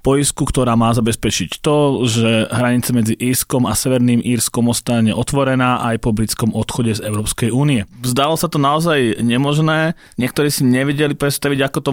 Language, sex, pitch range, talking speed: Slovak, male, 115-135 Hz, 160 wpm